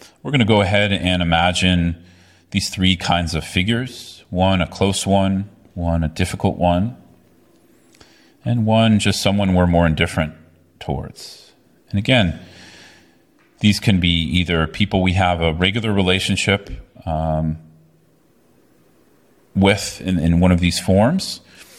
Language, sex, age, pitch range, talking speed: English, male, 30-49, 85-100 Hz, 130 wpm